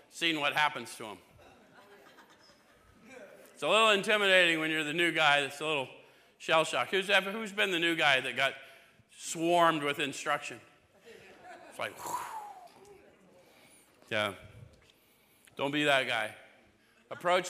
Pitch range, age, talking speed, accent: 150-195 Hz, 50-69, 125 wpm, American